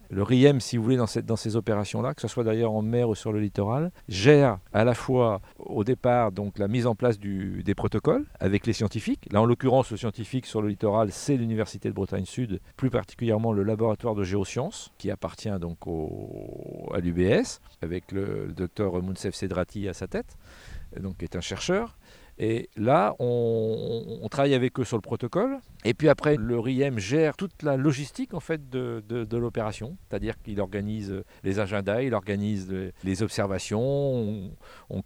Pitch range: 100-130 Hz